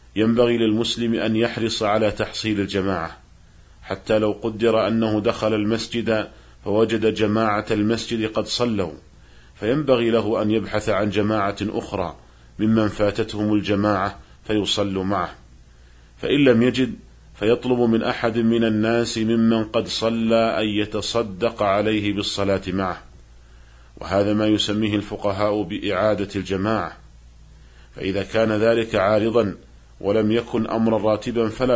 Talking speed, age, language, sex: 115 wpm, 40-59, Arabic, male